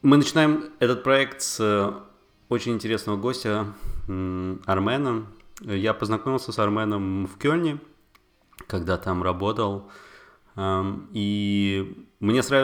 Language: Russian